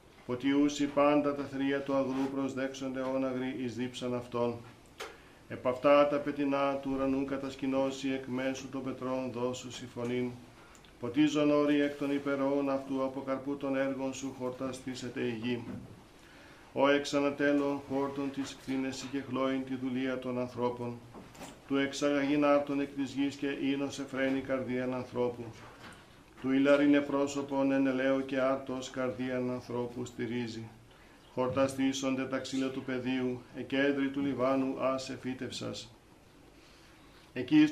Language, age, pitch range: Greek, 50-69, 125-140 Hz